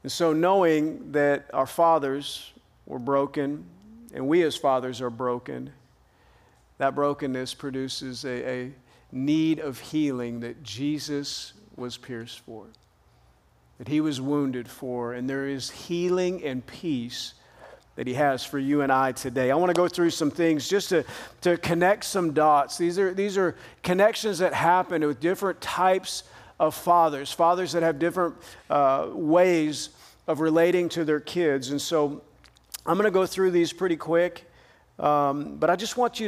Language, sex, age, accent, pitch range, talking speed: English, male, 40-59, American, 135-170 Hz, 165 wpm